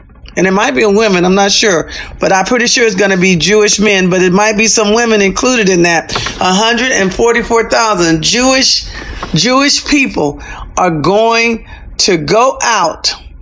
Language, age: English, 40-59